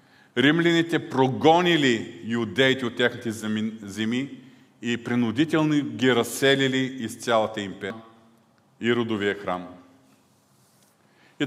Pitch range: 120-160 Hz